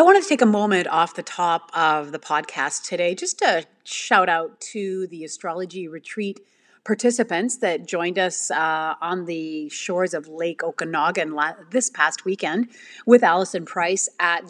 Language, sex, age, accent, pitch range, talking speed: English, female, 30-49, American, 180-225 Hz, 170 wpm